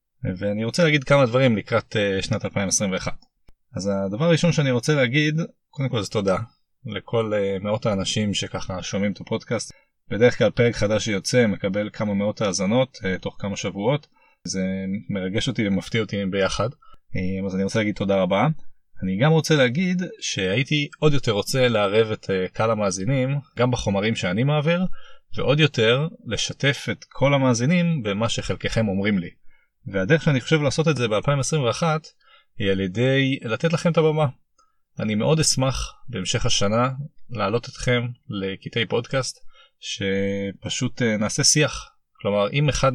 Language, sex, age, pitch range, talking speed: Hebrew, male, 20-39, 100-140 Hz, 145 wpm